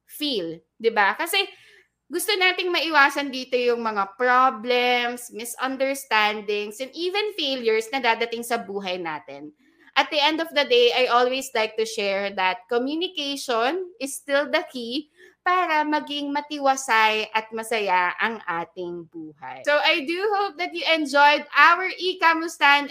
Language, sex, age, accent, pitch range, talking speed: Filipino, female, 20-39, native, 230-325 Hz, 140 wpm